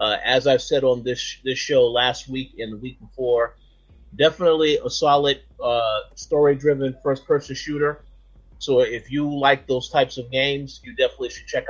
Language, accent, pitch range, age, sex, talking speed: English, American, 120-150 Hz, 30-49, male, 170 wpm